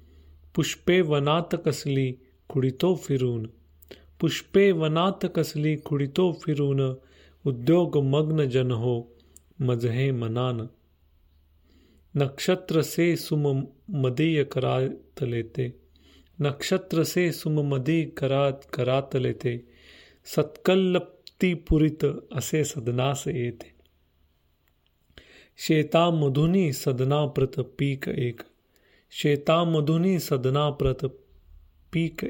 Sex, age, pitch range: male, 30-49, 120-155 Hz